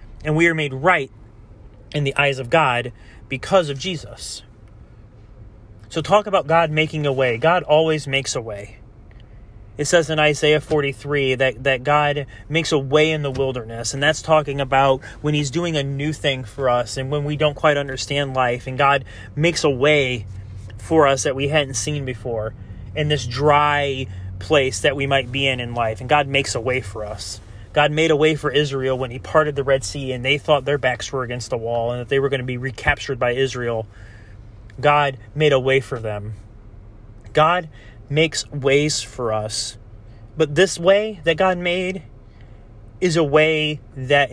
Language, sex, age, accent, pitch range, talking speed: English, male, 30-49, American, 115-150 Hz, 190 wpm